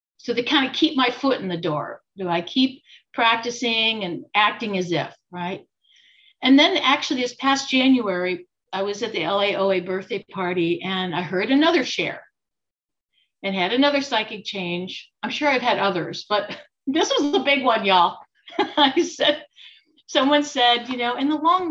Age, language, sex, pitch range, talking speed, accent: 50-69, English, female, 210-290 Hz, 175 wpm, American